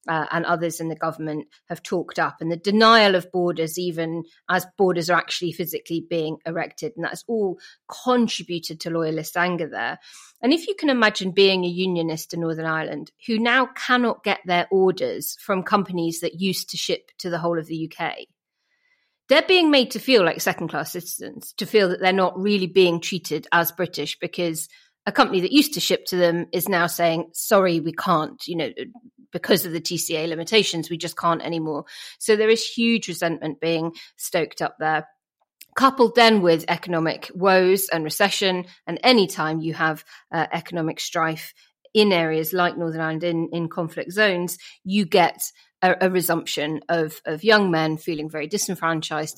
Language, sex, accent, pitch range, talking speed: English, female, British, 165-195 Hz, 180 wpm